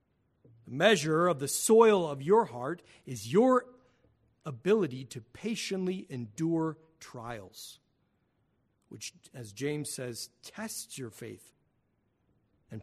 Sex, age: male, 50-69